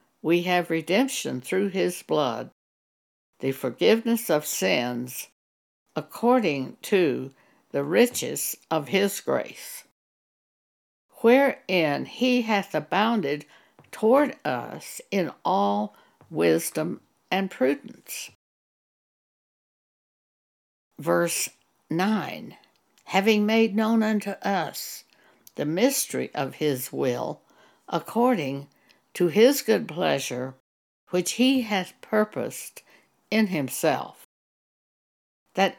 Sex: female